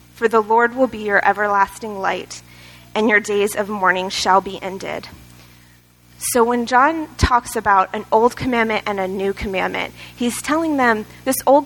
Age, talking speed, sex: 20-39, 170 wpm, female